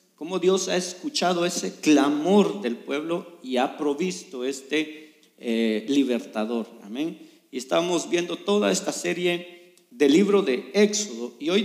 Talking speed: 140 wpm